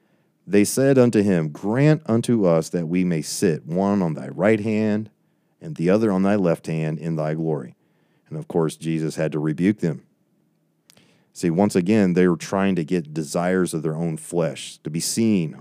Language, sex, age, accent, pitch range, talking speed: English, male, 40-59, American, 80-105 Hz, 190 wpm